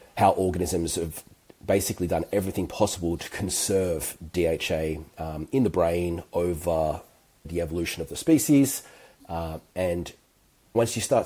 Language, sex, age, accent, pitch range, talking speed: English, male, 30-49, Australian, 85-105 Hz, 135 wpm